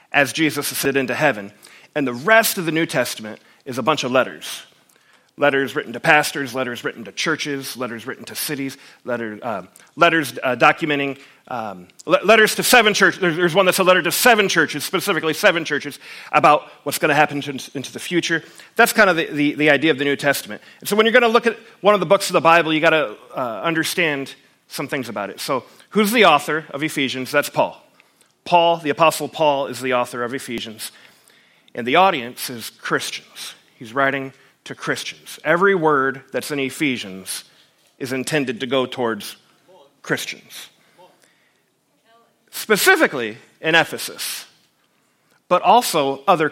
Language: English